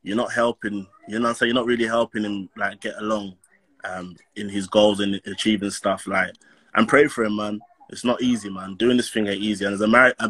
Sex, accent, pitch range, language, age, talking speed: male, British, 100-120 Hz, English, 20-39, 245 wpm